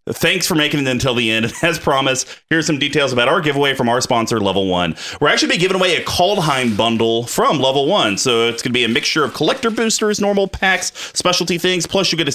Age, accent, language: 30-49, American, English